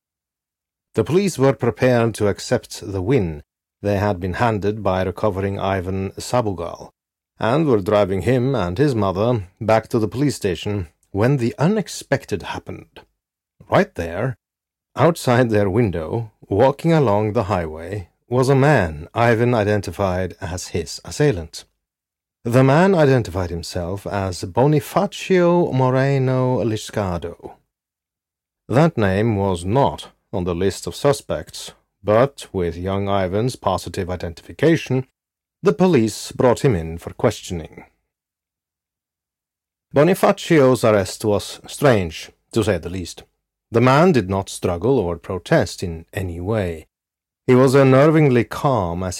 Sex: male